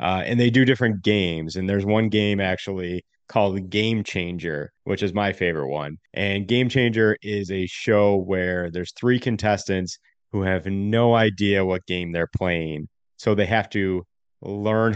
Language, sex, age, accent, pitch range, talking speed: English, male, 30-49, American, 90-100 Hz, 170 wpm